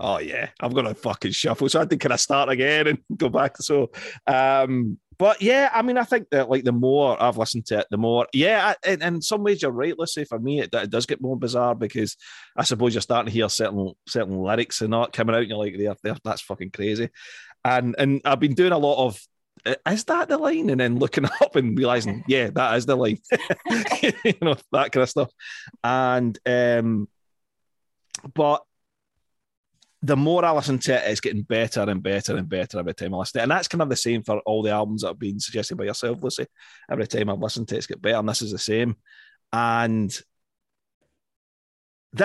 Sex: male